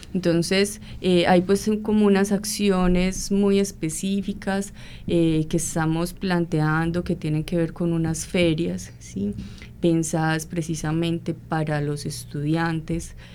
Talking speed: 115 wpm